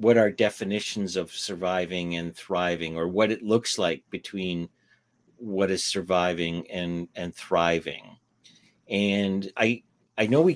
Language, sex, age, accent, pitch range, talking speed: English, male, 50-69, American, 90-110 Hz, 135 wpm